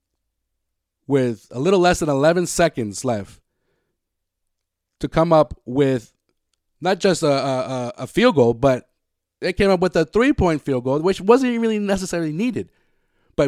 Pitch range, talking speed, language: 115-160 Hz, 160 wpm, English